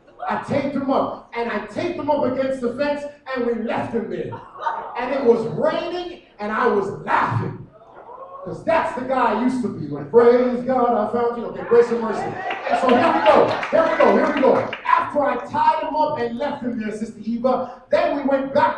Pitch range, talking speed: 235-305 Hz, 220 wpm